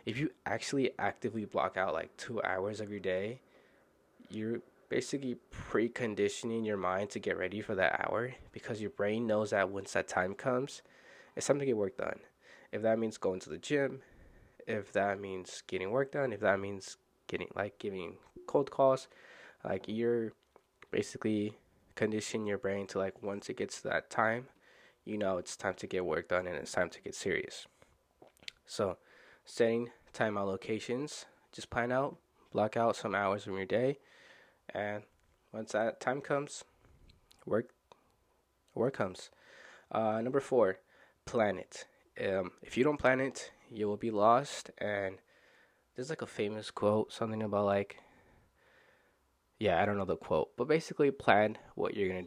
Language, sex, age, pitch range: English, male, 20-39, 100-125 Hz